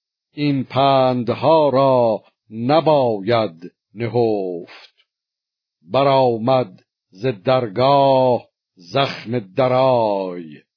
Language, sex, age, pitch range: Persian, male, 50-69, 115-140 Hz